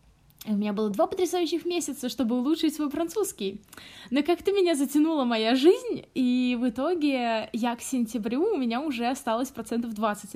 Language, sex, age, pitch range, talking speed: Russian, female, 20-39, 215-265 Hz, 160 wpm